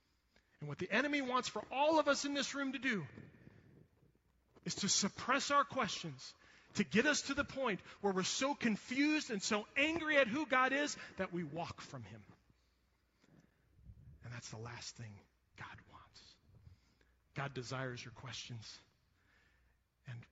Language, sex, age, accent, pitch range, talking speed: English, male, 40-59, American, 120-195 Hz, 155 wpm